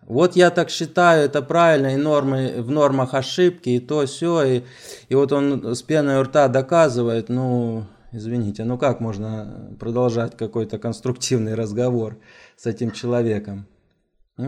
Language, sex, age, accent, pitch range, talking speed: Russian, male, 20-39, native, 105-135 Hz, 140 wpm